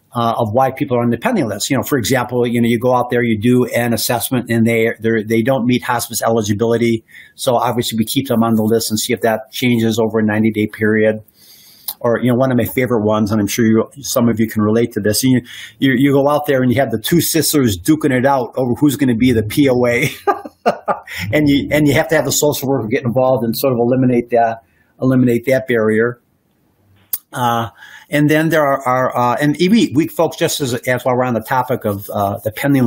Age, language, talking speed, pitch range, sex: 50-69, English, 245 wpm, 115-135 Hz, male